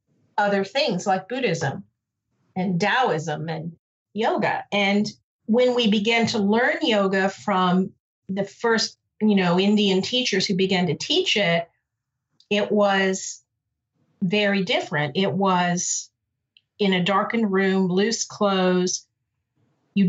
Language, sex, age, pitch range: English, female, 40-59, 175-215 Hz